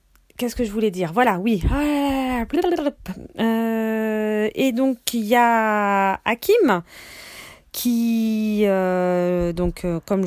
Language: French